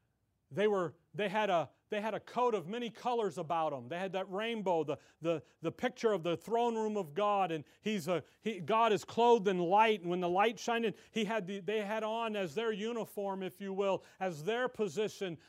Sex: male